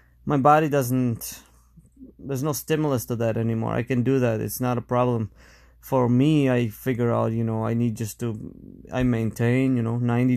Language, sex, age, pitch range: English, male, 20-39, 110-130 Hz